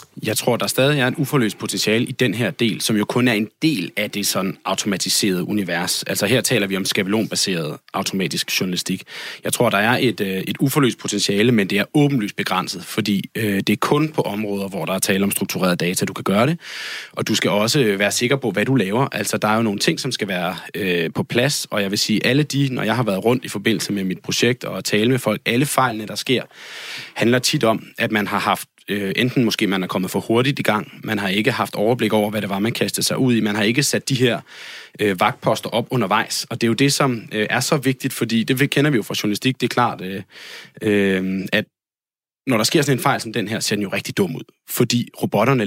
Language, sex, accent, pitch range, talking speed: Danish, male, native, 100-125 Hz, 240 wpm